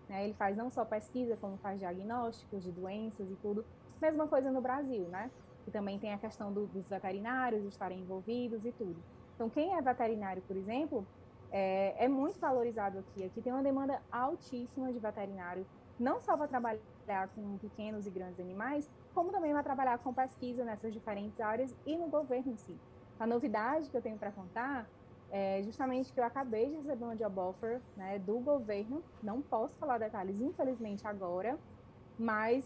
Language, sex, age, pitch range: Portuguese, female, 20-39, 210-265 Hz